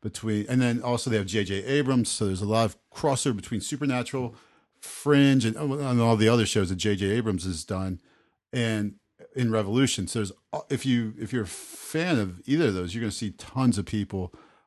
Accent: American